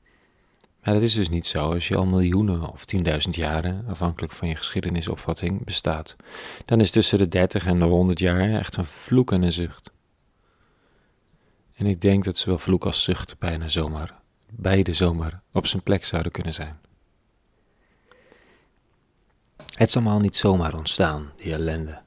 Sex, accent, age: male, Dutch, 40-59